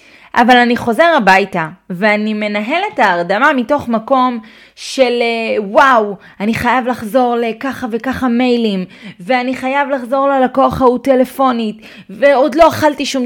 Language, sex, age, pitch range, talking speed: Hebrew, female, 30-49, 205-270 Hz, 120 wpm